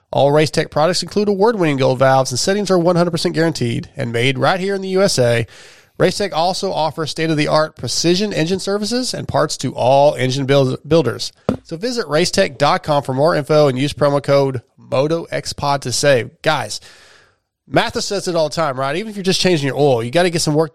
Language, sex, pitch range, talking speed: English, male, 135-175 Hz, 190 wpm